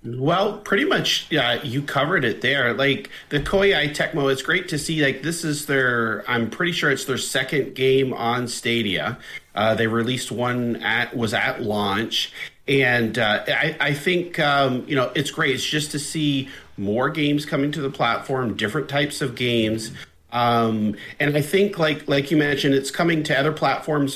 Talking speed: 185 wpm